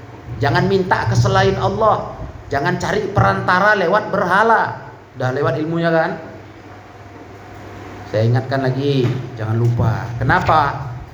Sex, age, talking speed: male, 30-49, 100 wpm